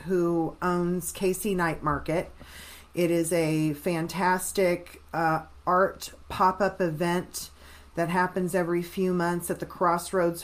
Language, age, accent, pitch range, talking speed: English, 40-59, American, 150-180 Hz, 120 wpm